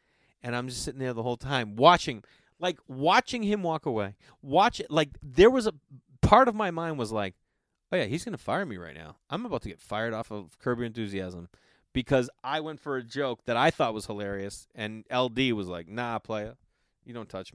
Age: 30-49